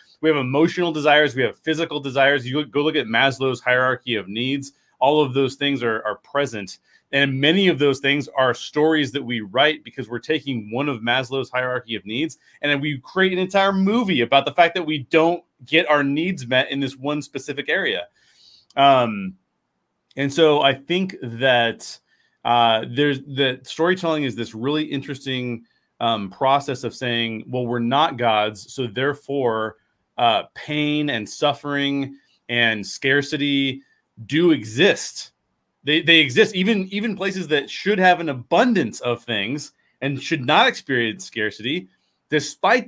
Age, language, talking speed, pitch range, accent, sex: 30-49, English, 160 wpm, 120-155 Hz, American, male